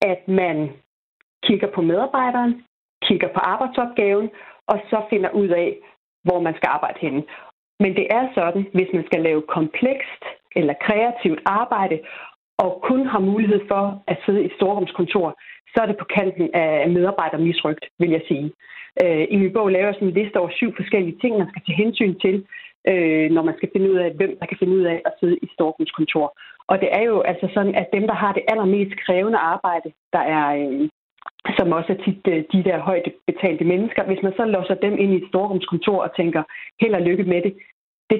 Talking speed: 200 wpm